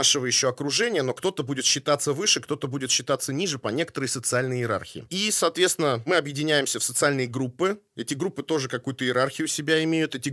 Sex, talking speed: male, 180 wpm